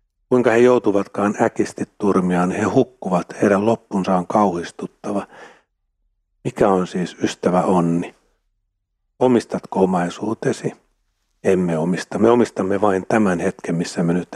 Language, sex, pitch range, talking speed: Finnish, male, 90-110 Hz, 115 wpm